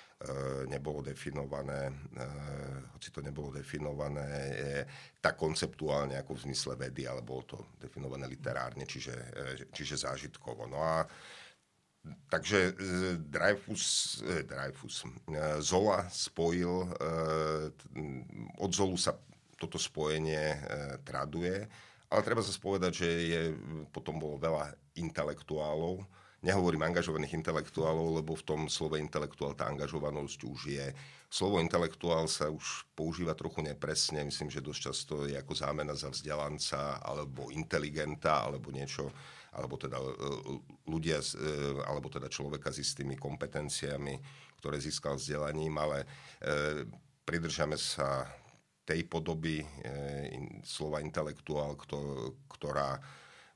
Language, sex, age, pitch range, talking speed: Slovak, male, 50-69, 70-80 Hz, 110 wpm